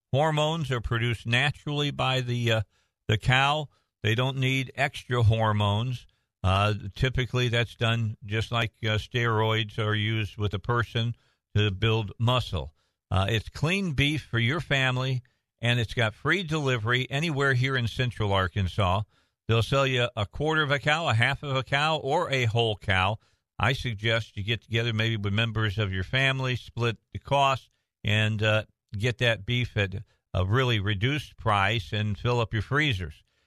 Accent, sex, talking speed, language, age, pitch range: American, male, 165 wpm, English, 50-69, 105-130 Hz